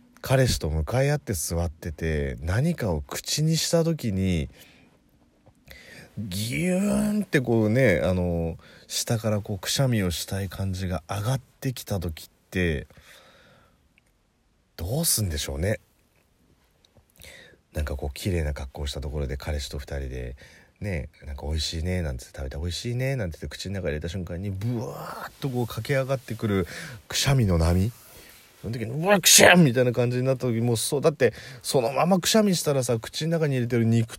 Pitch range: 85-130 Hz